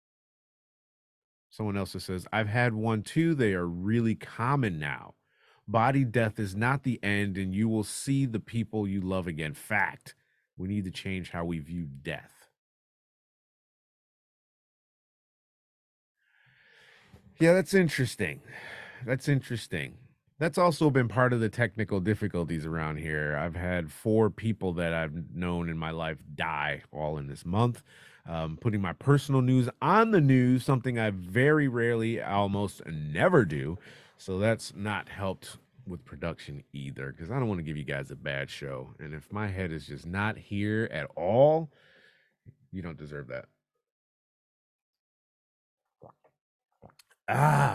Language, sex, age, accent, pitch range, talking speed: English, male, 30-49, American, 85-125 Hz, 145 wpm